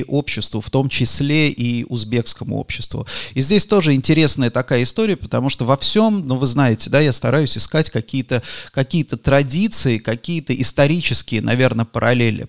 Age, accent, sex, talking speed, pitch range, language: 30-49, native, male, 150 wpm, 115-145 Hz, Russian